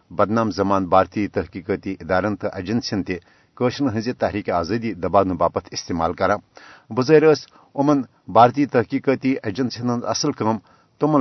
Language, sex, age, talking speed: Urdu, male, 60-79, 130 wpm